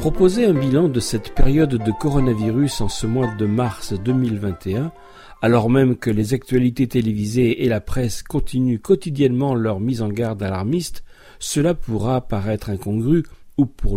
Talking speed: 155 wpm